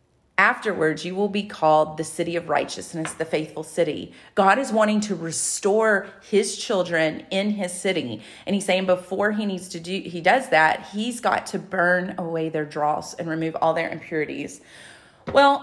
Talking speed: 175 wpm